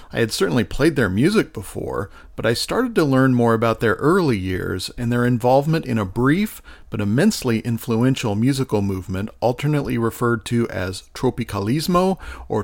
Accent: American